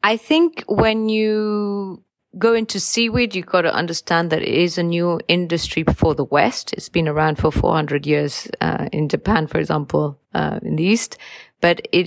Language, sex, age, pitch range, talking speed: English, female, 30-49, 150-175 Hz, 185 wpm